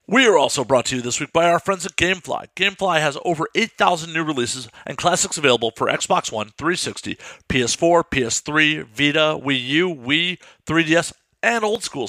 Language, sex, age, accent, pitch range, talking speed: English, male, 50-69, American, 145-190 Hz, 175 wpm